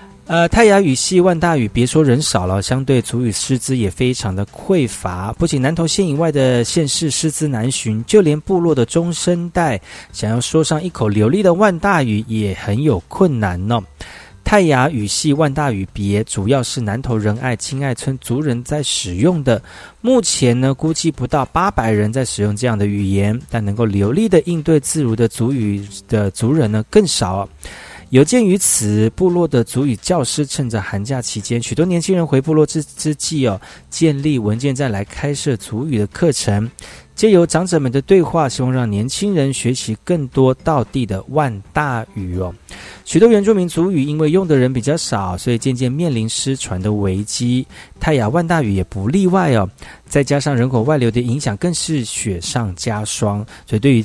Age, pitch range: 40-59, 110-155 Hz